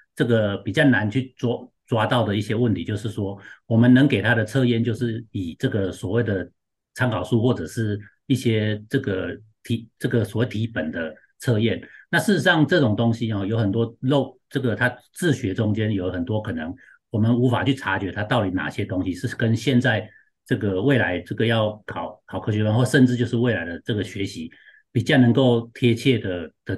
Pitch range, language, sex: 105-130 Hz, Chinese, male